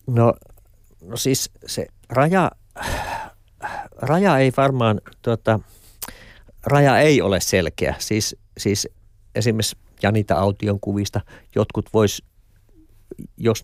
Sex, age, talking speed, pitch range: male, 50-69, 95 wpm, 95-105 Hz